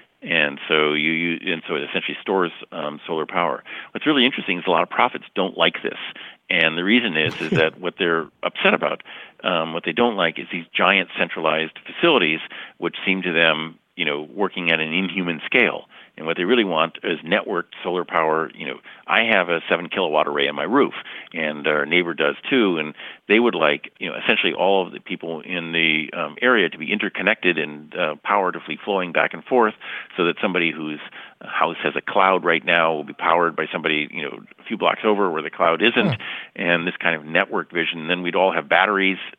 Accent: American